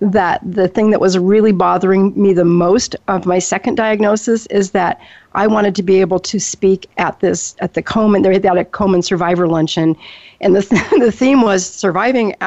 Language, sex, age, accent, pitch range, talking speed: English, female, 50-69, American, 180-210 Hz, 190 wpm